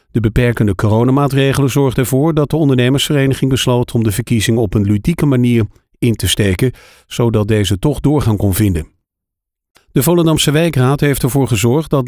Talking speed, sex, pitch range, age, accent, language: 160 wpm, male, 110-140 Hz, 50-69, Dutch, Dutch